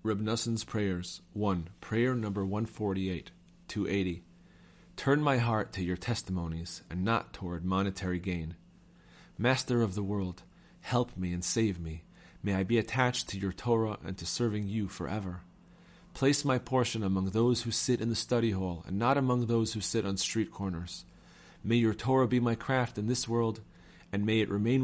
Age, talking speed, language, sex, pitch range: 40-59, 175 wpm, English, male, 95-120 Hz